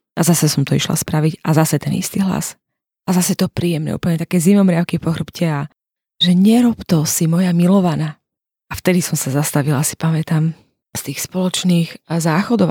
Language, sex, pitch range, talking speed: Slovak, female, 165-195 Hz, 180 wpm